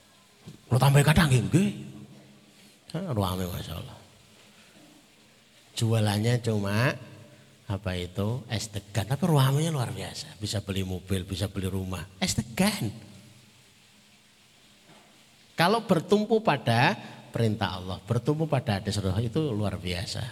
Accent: native